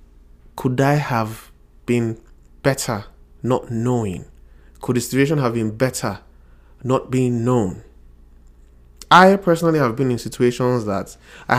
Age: 20-39